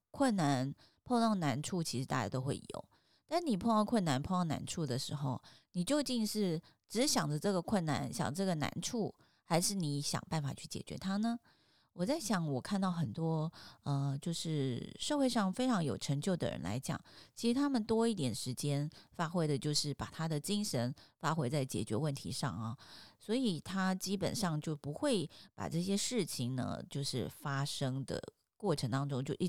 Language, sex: Chinese, female